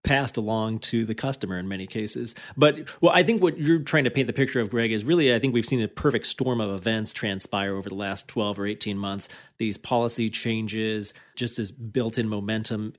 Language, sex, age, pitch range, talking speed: English, male, 30-49, 110-130 Hz, 220 wpm